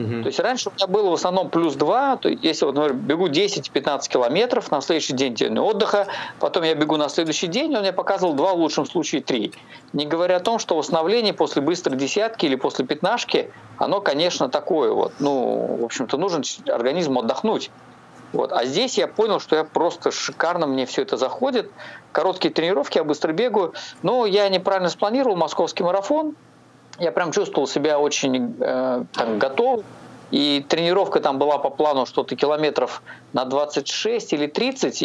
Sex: male